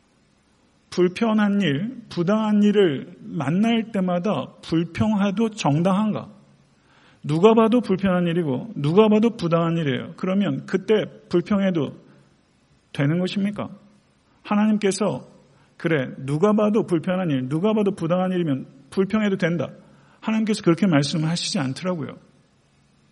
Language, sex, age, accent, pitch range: Korean, male, 40-59, native, 140-200 Hz